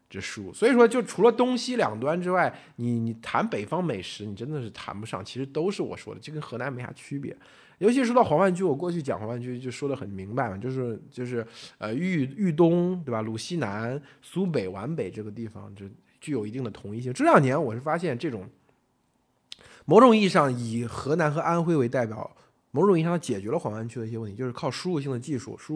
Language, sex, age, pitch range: Chinese, male, 20-39, 115-165 Hz